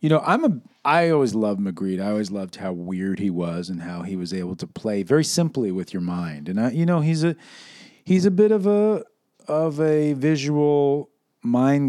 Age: 40-59